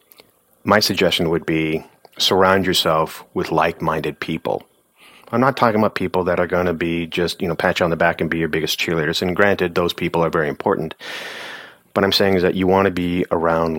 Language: English